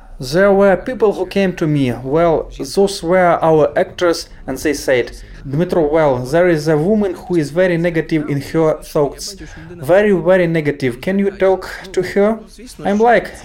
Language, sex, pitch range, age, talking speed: Ukrainian, male, 140-185 Hz, 30-49, 170 wpm